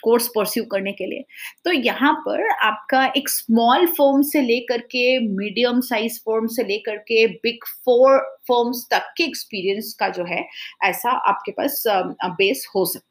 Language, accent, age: English, Indian, 30-49